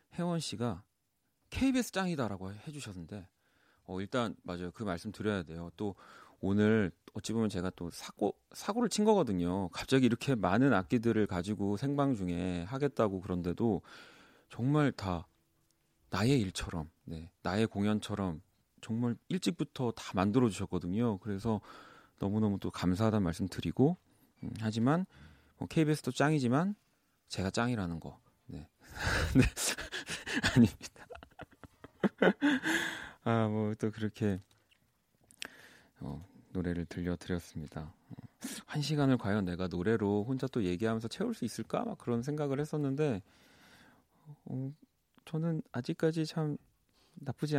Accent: native